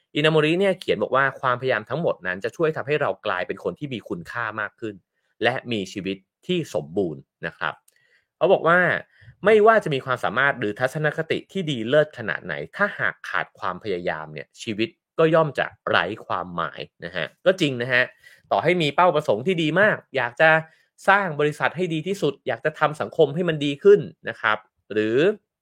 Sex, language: male, English